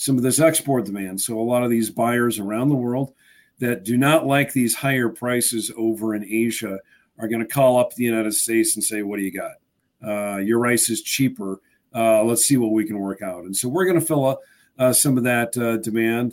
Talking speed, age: 235 wpm, 50-69